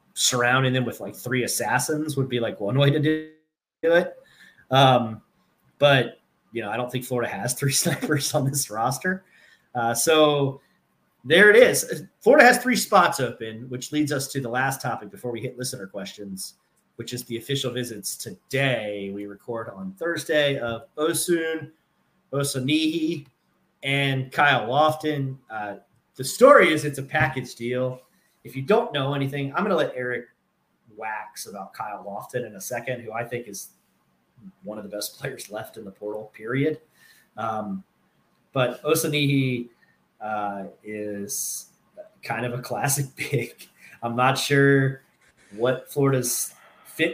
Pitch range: 120-155 Hz